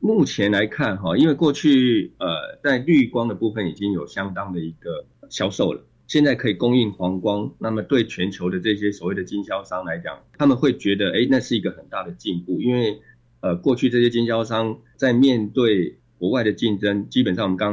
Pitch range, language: 95-125 Hz, Chinese